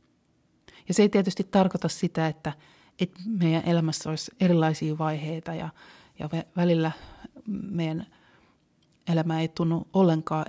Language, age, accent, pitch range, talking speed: Finnish, 30-49, native, 155-190 Hz, 120 wpm